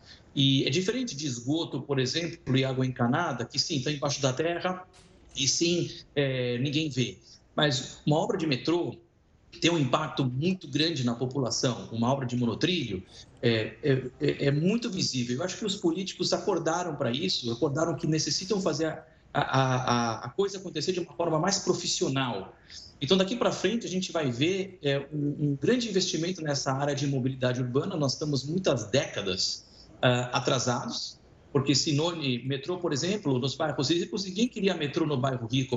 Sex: male